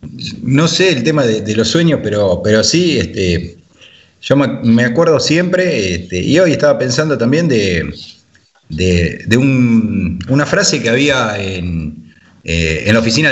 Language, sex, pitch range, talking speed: Spanish, male, 95-130 Hz, 160 wpm